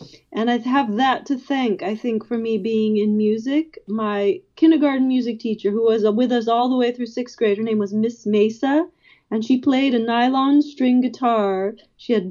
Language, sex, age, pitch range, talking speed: English, female, 30-49, 210-255 Hz, 200 wpm